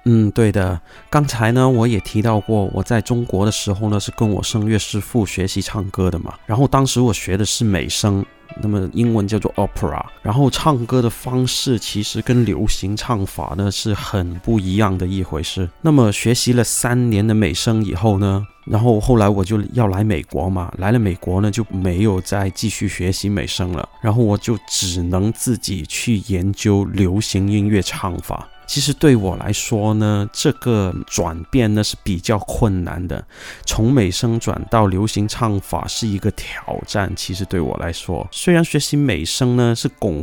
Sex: male